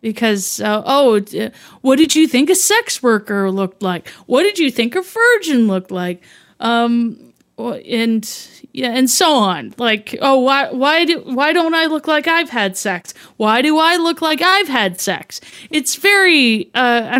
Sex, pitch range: female, 225-305 Hz